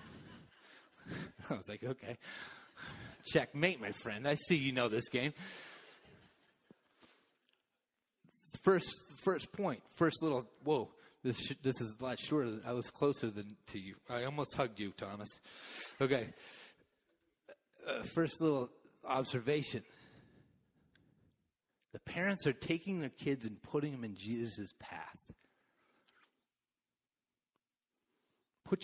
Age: 30-49